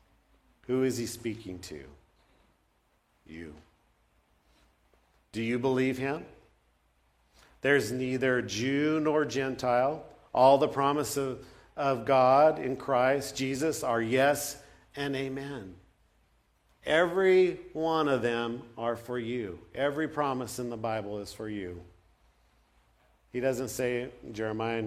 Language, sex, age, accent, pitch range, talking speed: English, male, 50-69, American, 90-135 Hz, 110 wpm